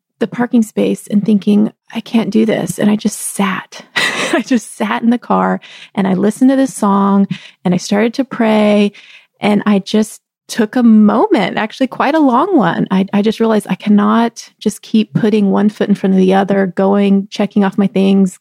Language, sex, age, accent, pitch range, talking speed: English, female, 20-39, American, 205-250 Hz, 200 wpm